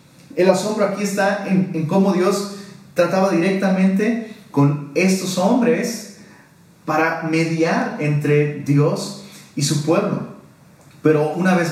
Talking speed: 120 wpm